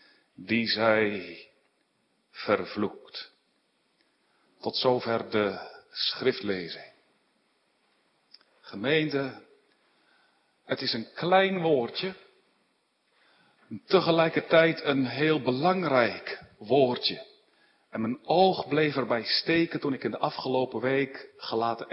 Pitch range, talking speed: 130-190 Hz, 85 wpm